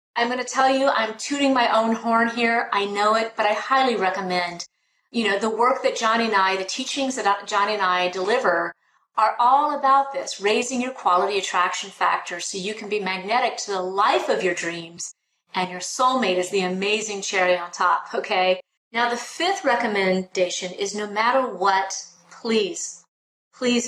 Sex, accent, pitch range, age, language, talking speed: female, American, 195-255 Hz, 40-59, English, 185 wpm